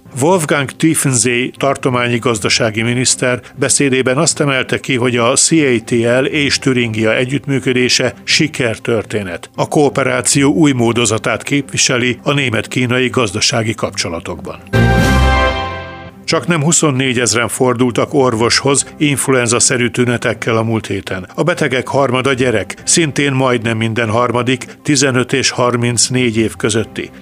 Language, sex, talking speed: Hungarian, male, 110 wpm